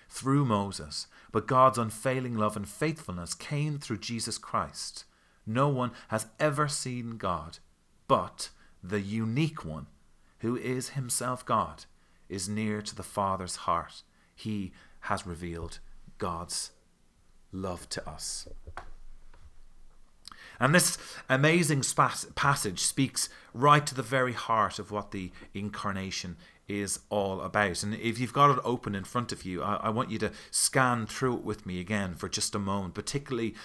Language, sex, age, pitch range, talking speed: English, male, 30-49, 95-130 Hz, 150 wpm